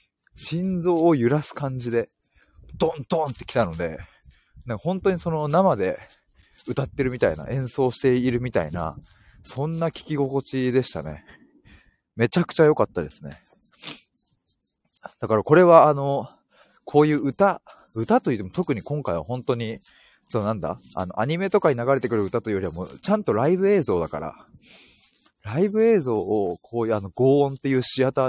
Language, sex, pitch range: Japanese, male, 105-145 Hz